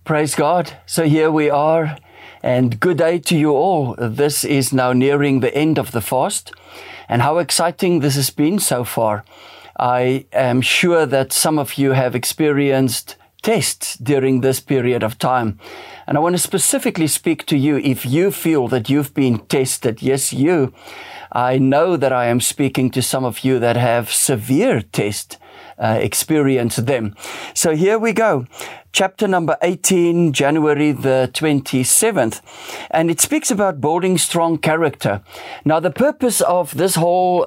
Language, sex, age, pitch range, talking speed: English, male, 50-69, 130-170 Hz, 160 wpm